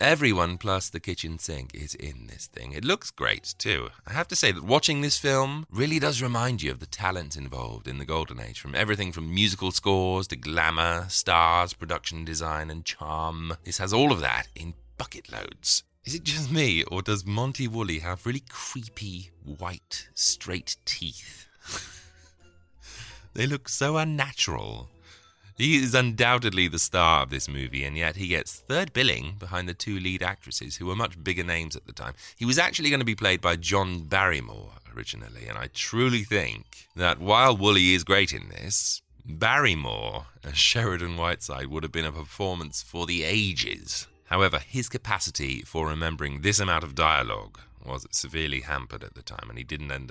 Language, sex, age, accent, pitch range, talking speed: English, male, 30-49, British, 80-110 Hz, 180 wpm